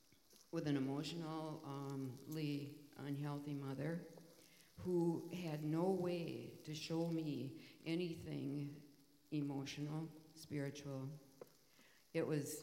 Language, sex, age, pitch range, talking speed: English, female, 60-79, 145-170 Hz, 80 wpm